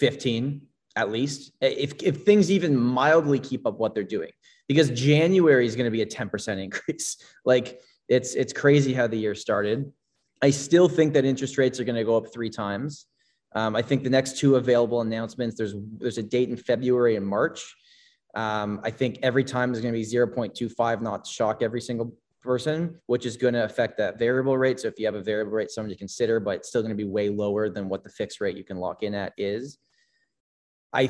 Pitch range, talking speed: 110-135 Hz, 225 wpm